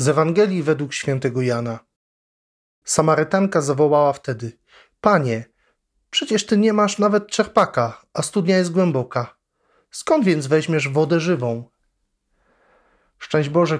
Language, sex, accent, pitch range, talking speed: Polish, male, native, 140-185 Hz, 115 wpm